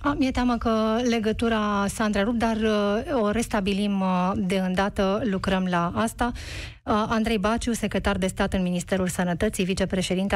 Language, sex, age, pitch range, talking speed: Romanian, female, 30-49, 195-235 Hz, 140 wpm